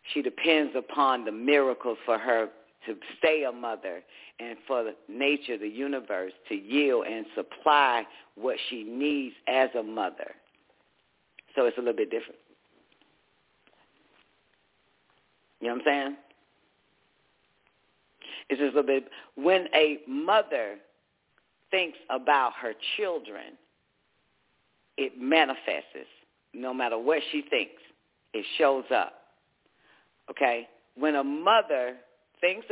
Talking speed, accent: 120 wpm, American